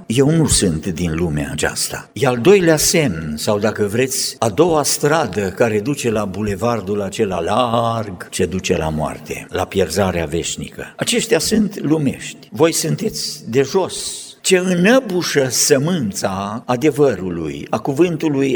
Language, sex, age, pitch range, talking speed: Romanian, male, 50-69, 110-155 Hz, 135 wpm